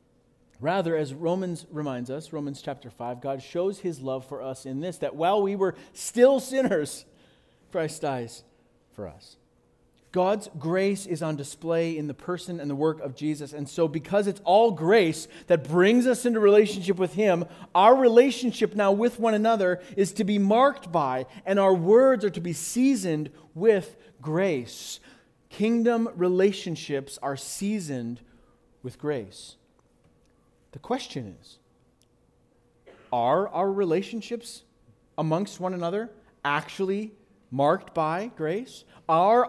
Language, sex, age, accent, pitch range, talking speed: English, male, 40-59, American, 145-200 Hz, 140 wpm